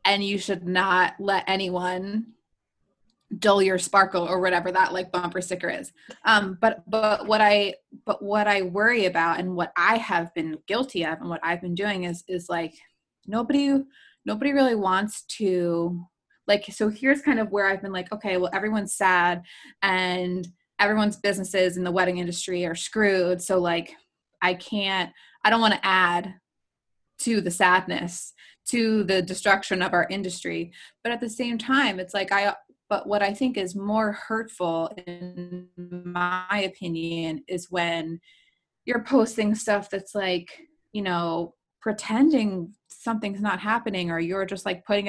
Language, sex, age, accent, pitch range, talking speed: English, female, 20-39, American, 180-210 Hz, 160 wpm